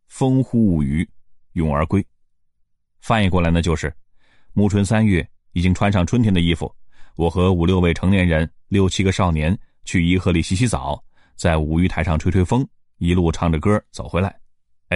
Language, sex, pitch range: Chinese, male, 85-105 Hz